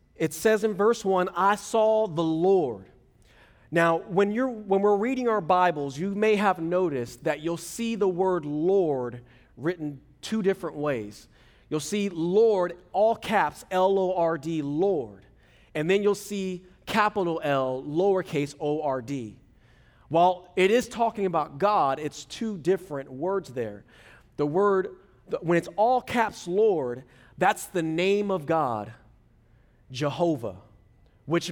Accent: American